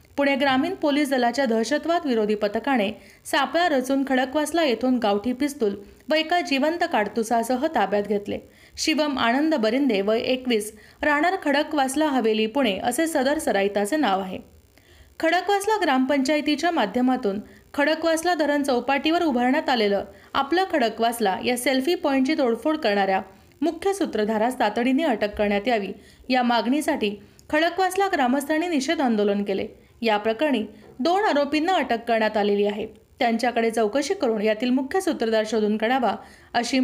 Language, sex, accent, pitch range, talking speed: Marathi, female, native, 225-305 Hz, 130 wpm